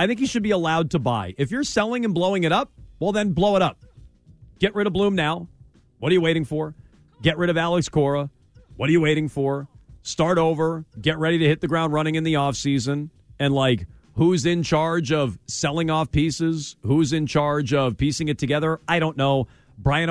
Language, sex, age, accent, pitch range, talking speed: English, male, 40-59, American, 135-175 Hz, 215 wpm